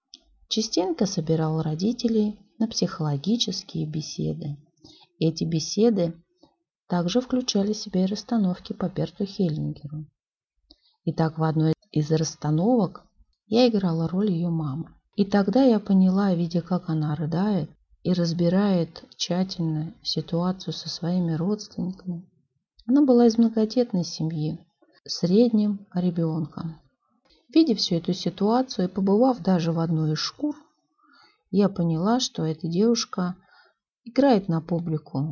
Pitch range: 165-215 Hz